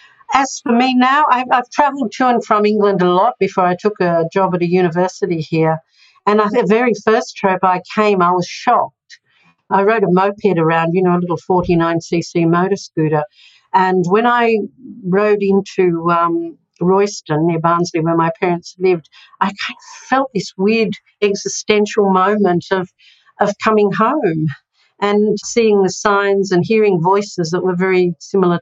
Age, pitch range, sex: 50-69, 175-210 Hz, female